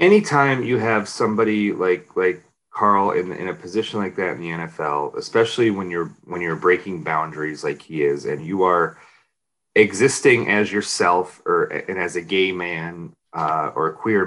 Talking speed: 175 wpm